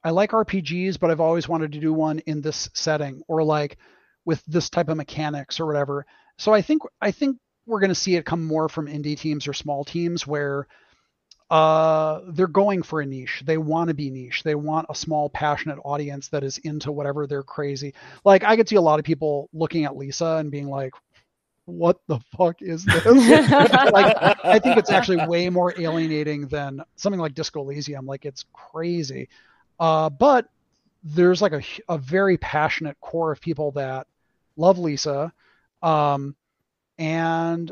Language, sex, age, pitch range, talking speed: English, male, 30-49, 150-180 Hz, 180 wpm